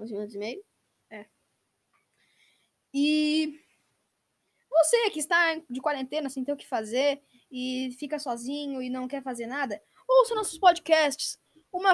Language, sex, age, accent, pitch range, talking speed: Portuguese, female, 10-29, Brazilian, 275-340 Hz, 115 wpm